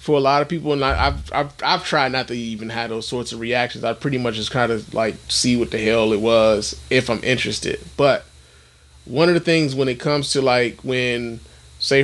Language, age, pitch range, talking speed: English, 20-39, 115-155 Hz, 230 wpm